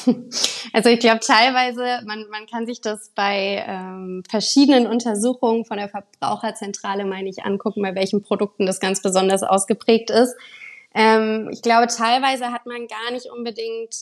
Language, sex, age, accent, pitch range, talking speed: German, female, 20-39, German, 195-245 Hz, 155 wpm